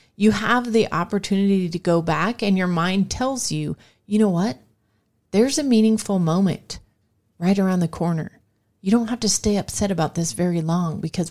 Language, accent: English, American